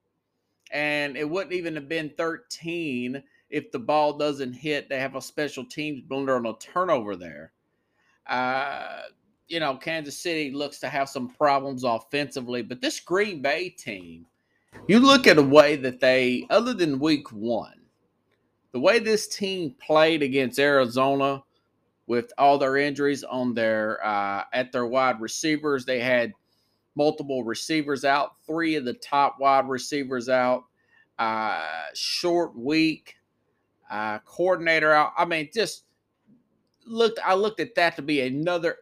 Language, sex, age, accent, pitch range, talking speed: English, male, 30-49, American, 130-165 Hz, 150 wpm